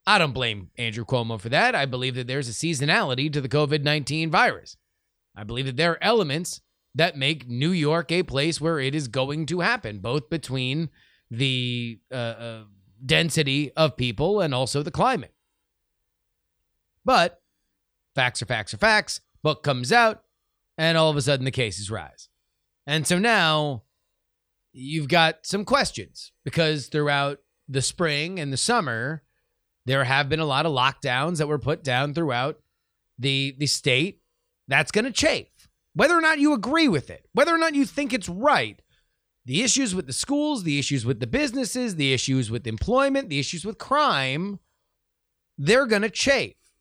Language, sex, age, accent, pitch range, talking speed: English, male, 30-49, American, 130-180 Hz, 170 wpm